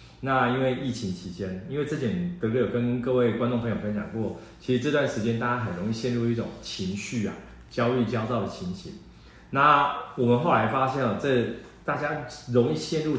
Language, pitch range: Chinese, 110-130 Hz